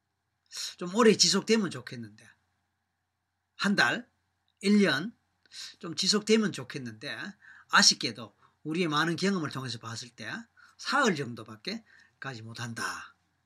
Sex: male